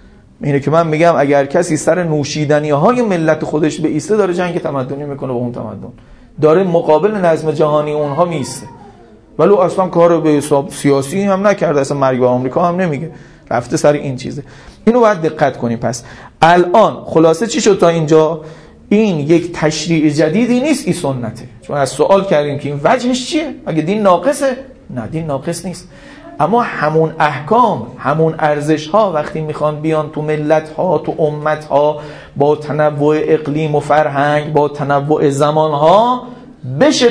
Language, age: Persian, 40-59